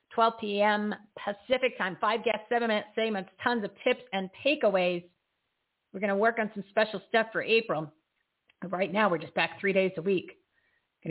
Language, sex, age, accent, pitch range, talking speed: English, female, 40-59, American, 185-235 Hz, 190 wpm